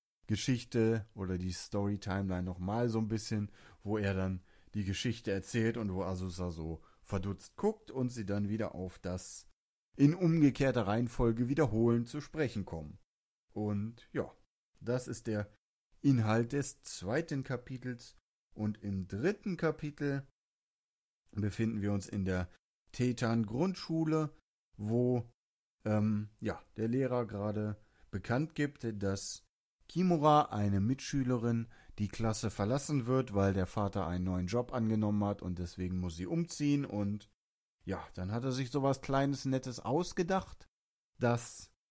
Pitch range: 100-130 Hz